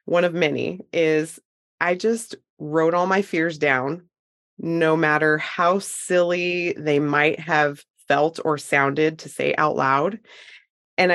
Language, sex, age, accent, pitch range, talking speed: English, female, 20-39, American, 155-195 Hz, 140 wpm